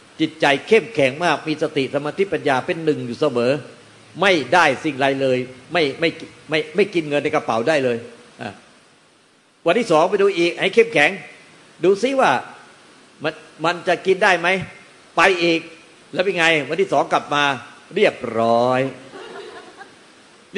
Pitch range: 135-170 Hz